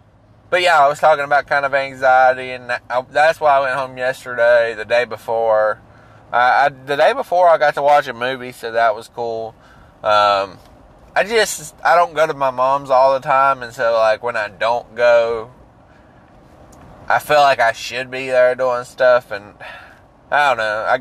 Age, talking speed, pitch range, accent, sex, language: 20-39, 185 wpm, 105-130 Hz, American, male, English